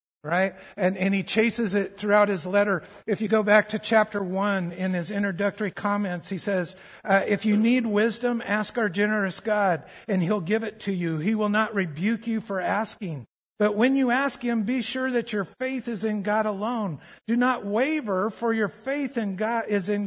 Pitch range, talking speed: 200-235 Hz, 205 wpm